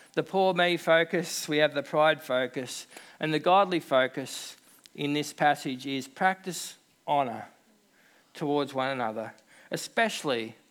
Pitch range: 145-190 Hz